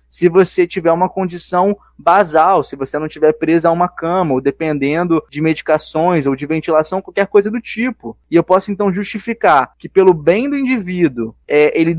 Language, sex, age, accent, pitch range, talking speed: Portuguese, male, 20-39, Brazilian, 150-195 Hz, 180 wpm